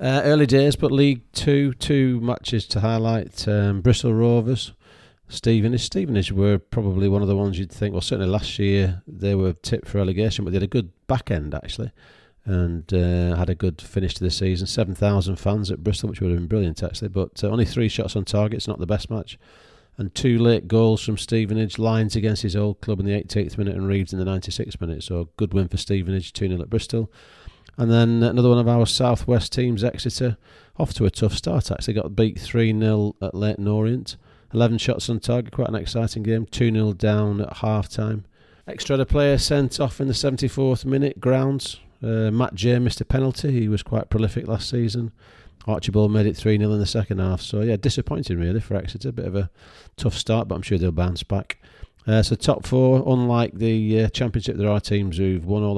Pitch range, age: 100-120 Hz, 40-59